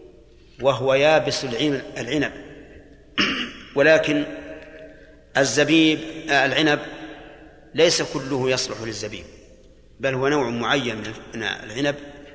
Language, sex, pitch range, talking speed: Arabic, male, 120-150 Hz, 85 wpm